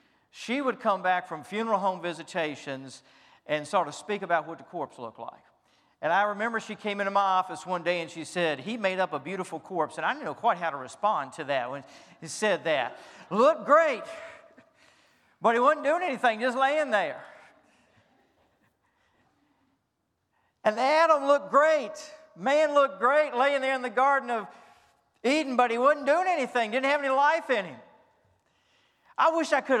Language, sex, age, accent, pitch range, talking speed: English, male, 50-69, American, 200-270 Hz, 180 wpm